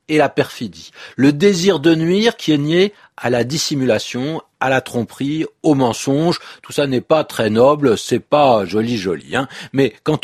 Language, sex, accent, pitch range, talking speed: French, male, French, 120-170 Hz, 180 wpm